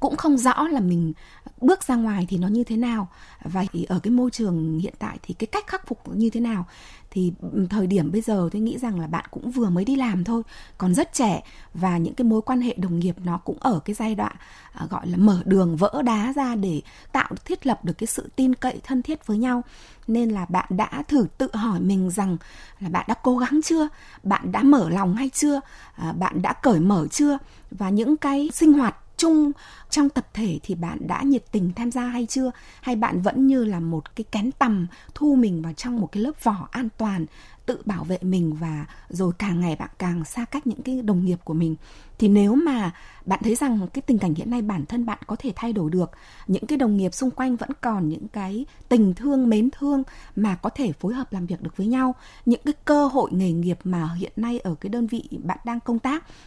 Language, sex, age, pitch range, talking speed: Vietnamese, female, 20-39, 185-255 Hz, 240 wpm